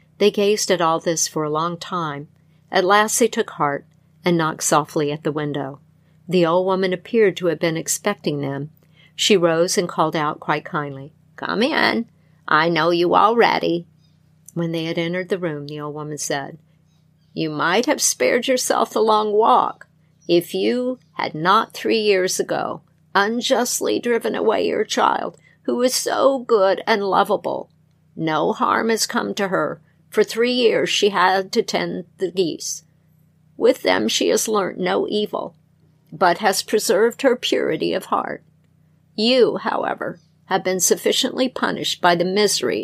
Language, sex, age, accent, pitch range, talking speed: English, female, 50-69, American, 155-210 Hz, 160 wpm